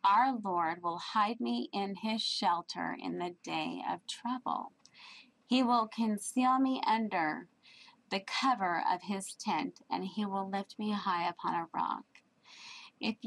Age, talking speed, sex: 30-49, 150 wpm, female